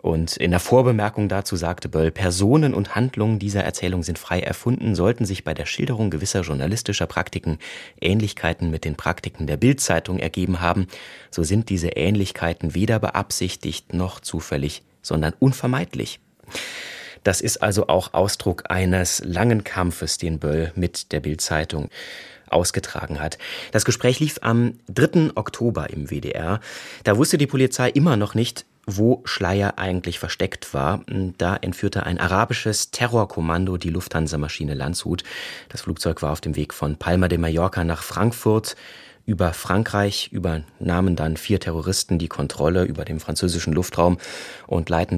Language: German